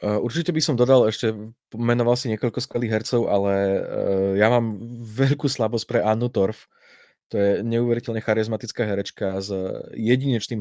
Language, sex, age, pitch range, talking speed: Slovak, male, 20-39, 100-120 Hz, 140 wpm